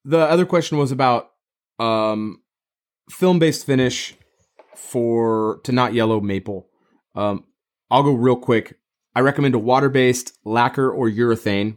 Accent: American